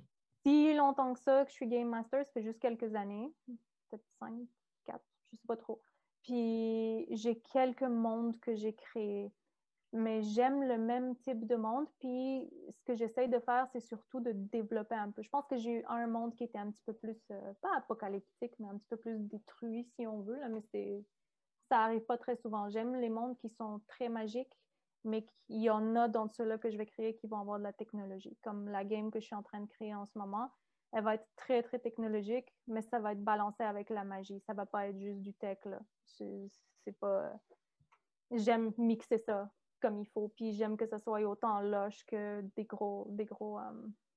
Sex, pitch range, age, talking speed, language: female, 210-245 Hz, 30-49, 220 wpm, French